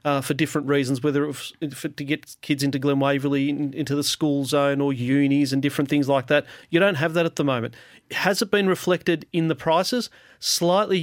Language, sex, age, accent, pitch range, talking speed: English, male, 40-59, Australian, 140-170 Hz, 225 wpm